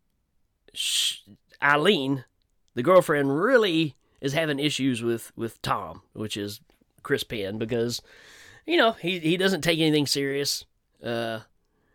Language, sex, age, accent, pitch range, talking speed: English, male, 30-49, American, 125-165 Hz, 120 wpm